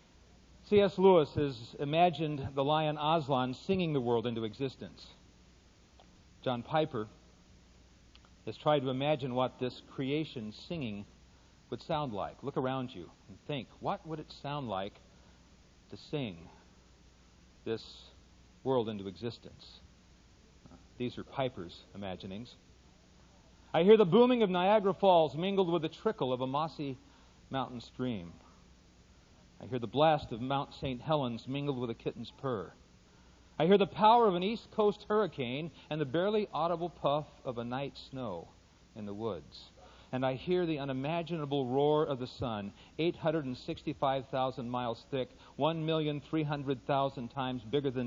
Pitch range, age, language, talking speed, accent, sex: 110-155 Hz, 50-69, English, 140 wpm, American, male